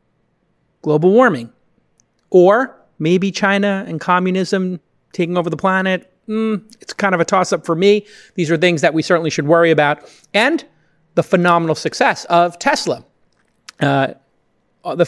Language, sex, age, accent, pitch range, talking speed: English, male, 30-49, American, 155-195 Hz, 145 wpm